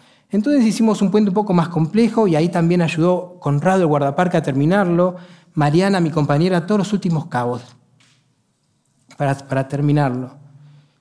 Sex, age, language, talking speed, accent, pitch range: male, 30-49, Spanish, 145 wpm, Argentinian, 145-215 Hz